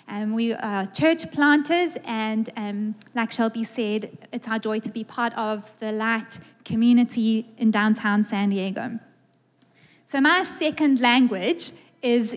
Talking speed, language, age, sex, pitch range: 140 wpm, English, 20-39, female, 225-290 Hz